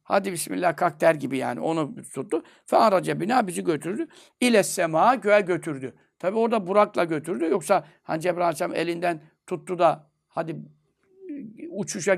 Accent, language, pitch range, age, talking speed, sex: native, Turkish, 155-220 Hz, 60-79, 130 wpm, male